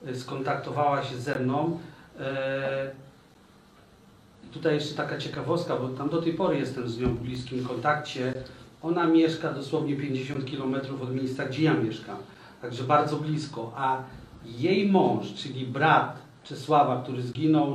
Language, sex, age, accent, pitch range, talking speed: Polish, male, 40-59, native, 130-155 Hz, 140 wpm